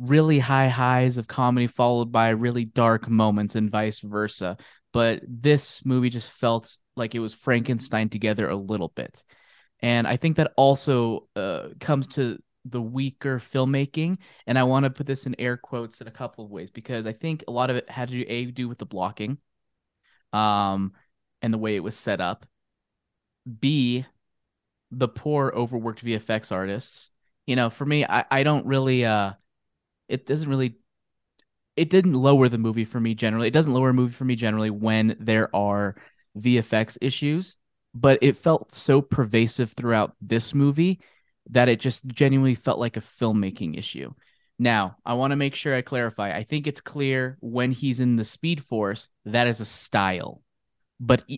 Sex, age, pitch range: male, 20-39, 110-135 Hz